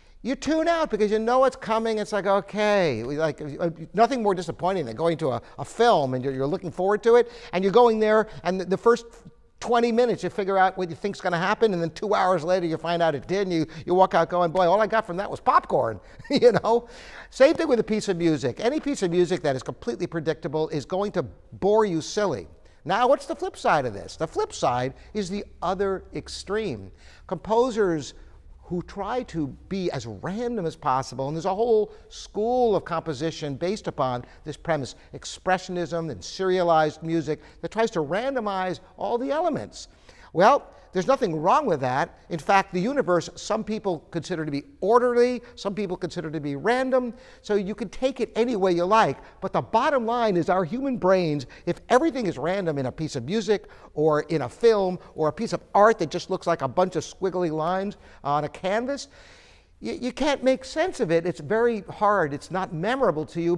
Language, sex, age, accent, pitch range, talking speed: English, male, 50-69, American, 160-225 Hz, 210 wpm